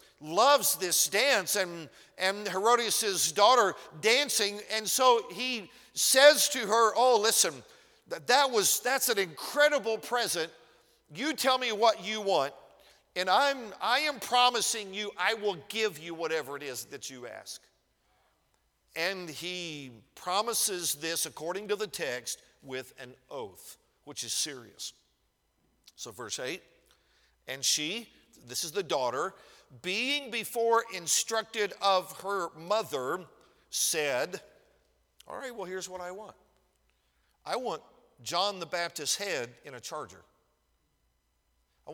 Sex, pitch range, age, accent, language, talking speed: male, 135-225 Hz, 50-69, American, English, 130 wpm